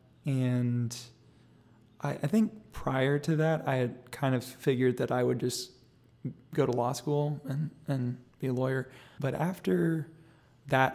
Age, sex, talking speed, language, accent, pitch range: 20-39, male, 155 wpm, English, American, 125-145 Hz